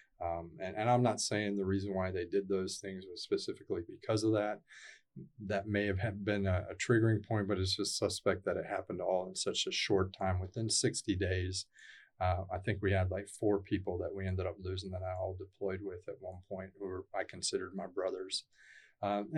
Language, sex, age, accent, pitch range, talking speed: English, male, 30-49, American, 95-110 Hz, 215 wpm